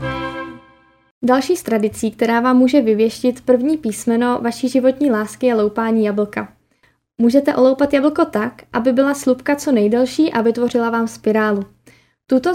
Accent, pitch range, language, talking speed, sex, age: native, 215-260 Hz, Czech, 140 wpm, female, 10-29